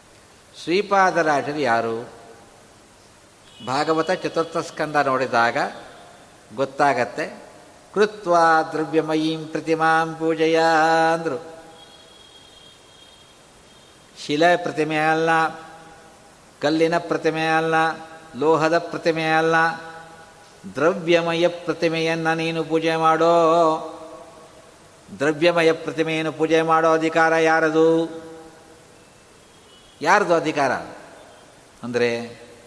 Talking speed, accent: 60 wpm, native